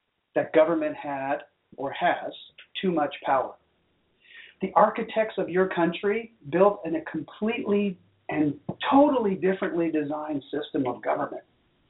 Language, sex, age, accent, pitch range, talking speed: English, male, 40-59, American, 165-220 Hz, 120 wpm